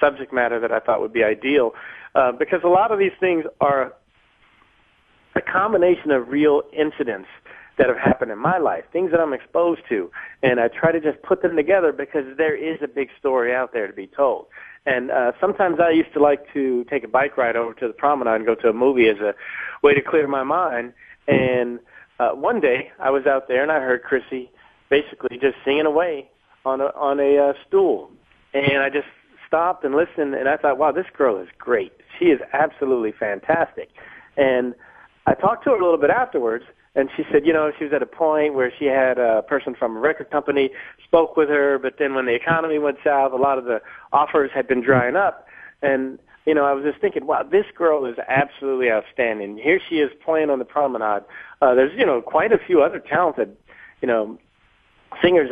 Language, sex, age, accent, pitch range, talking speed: English, male, 40-59, American, 130-160 Hz, 215 wpm